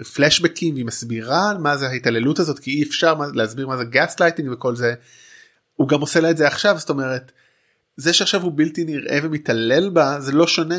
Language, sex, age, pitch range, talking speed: Hebrew, male, 20-39, 130-165 Hz, 200 wpm